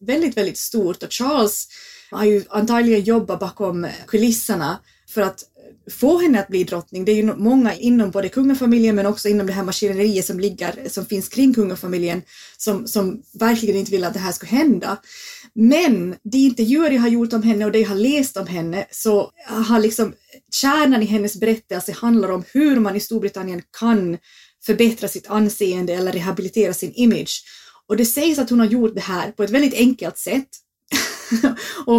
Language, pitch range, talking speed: Swedish, 195-235 Hz, 180 wpm